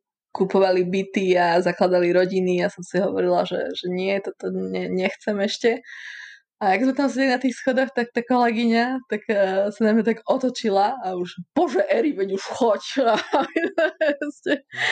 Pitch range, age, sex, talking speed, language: 185-230 Hz, 20-39, female, 175 wpm, Slovak